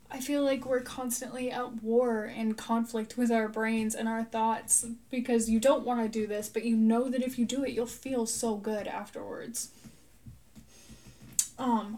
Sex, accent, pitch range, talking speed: female, American, 220-245 Hz, 180 wpm